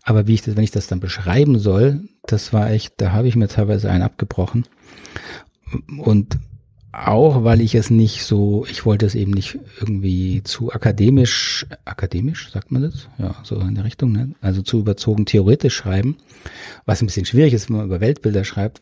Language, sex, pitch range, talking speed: German, male, 100-120 Hz, 190 wpm